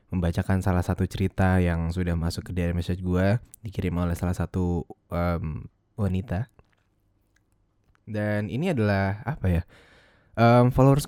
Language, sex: English, male